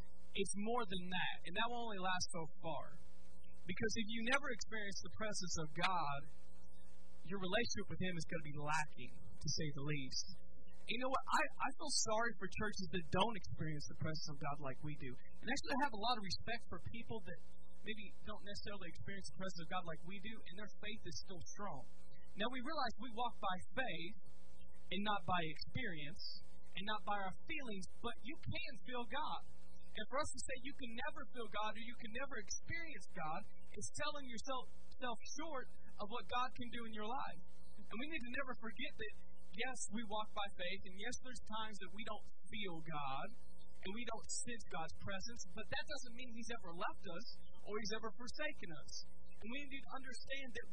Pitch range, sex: 160-240 Hz, male